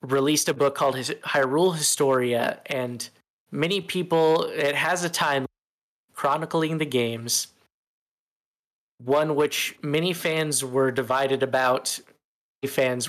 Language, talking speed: English, 125 wpm